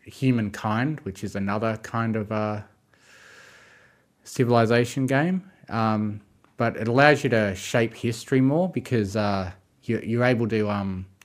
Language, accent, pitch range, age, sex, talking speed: English, Australian, 100-120 Hz, 20-39, male, 130 wpm